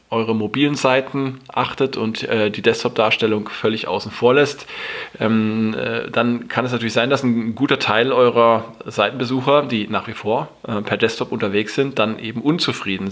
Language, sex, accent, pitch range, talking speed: German, male, German, 110-125 Hz, 170 wpm